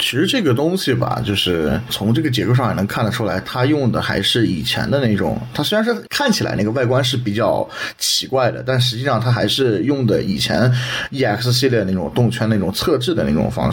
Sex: male